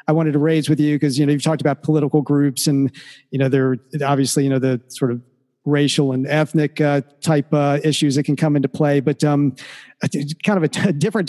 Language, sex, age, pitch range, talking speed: English, male, 50-69, 140-165 Hz, 235 wpm